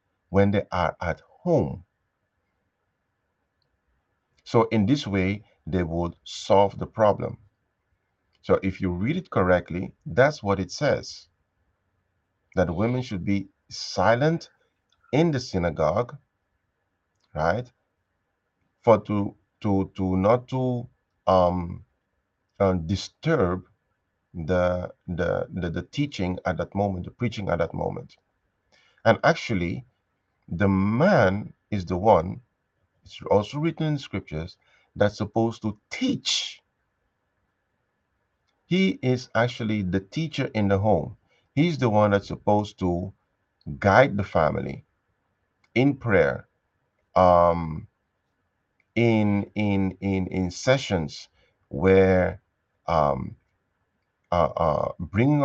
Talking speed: 110 wpm